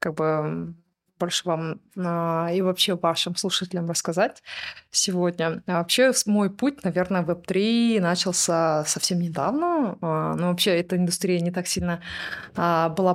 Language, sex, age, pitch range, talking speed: Russian, female, 20-39, 170-190 Hz, 135 wpm